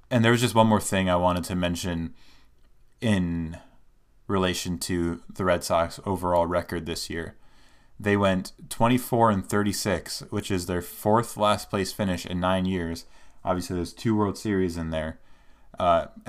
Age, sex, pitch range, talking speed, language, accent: 20-39, male, 90-110 Hz, 160 wpm, English, American